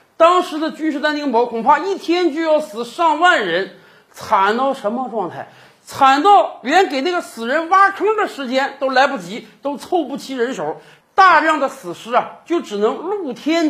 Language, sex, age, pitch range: Chinese, male, 50-69, 210-315 Hz